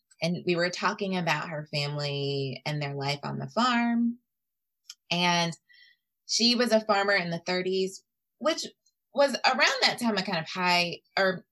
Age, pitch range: 20-39, 155-215 Hz